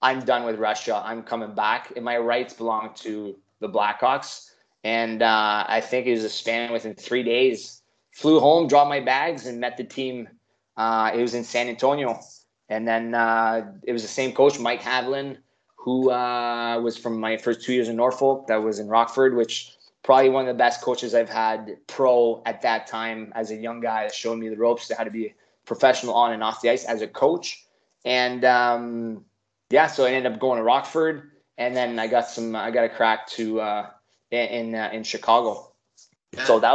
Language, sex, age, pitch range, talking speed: English, male, 20-39, 110-125 Hz, 205 wpm